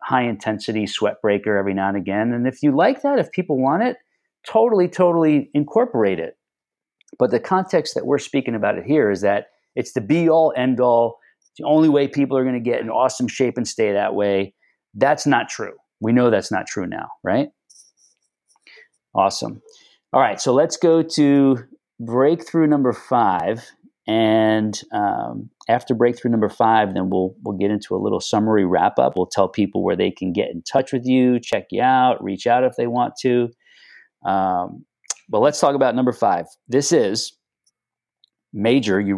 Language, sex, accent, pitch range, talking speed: English, male, American, 105-160 Hz, 185 wpm